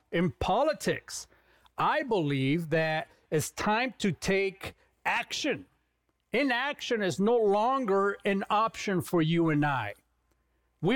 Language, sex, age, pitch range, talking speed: English, male, 40-59, 175-225 Hz, 115 wpm